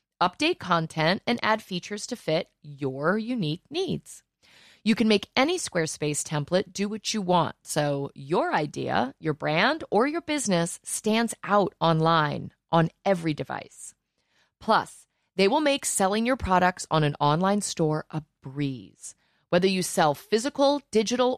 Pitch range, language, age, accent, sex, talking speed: 155-235 Hz, English, 30-49, American, female, 145 wpm